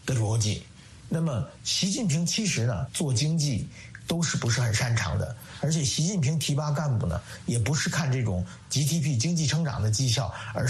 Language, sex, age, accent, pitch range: Chinese, male, 50-69, native, 120-170 Hz